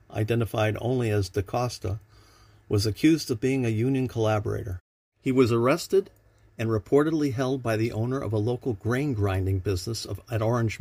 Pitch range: 105-125 Hz